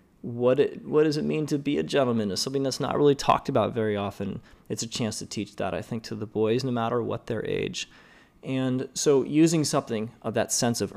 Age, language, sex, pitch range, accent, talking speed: 30-49, English, male, 110-145 Hz, American, 235 wpm